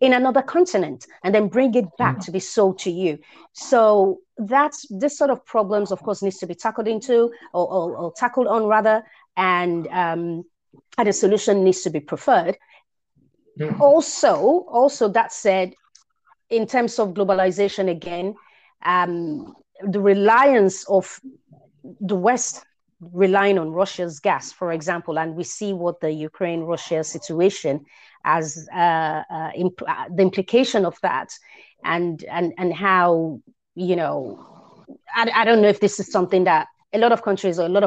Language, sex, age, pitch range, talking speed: English, female, 30-49, 175-230 Hz, 160 wpm